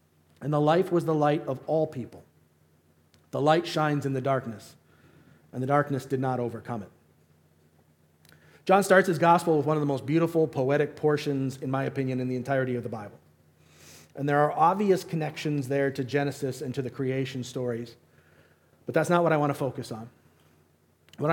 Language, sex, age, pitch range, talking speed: English, male, 40-59, 120-160 Hz, 185 wpm